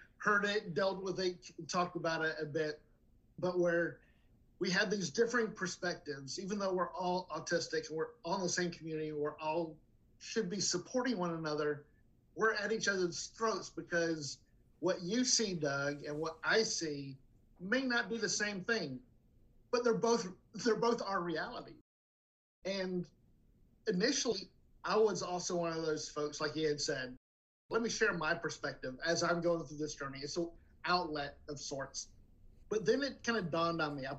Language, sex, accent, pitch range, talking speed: English, male, American, 150-190 Hz, 175 wpm